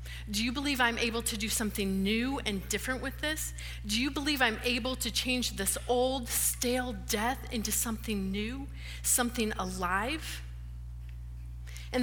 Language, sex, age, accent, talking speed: English, female, 40-59, American, 150 wpm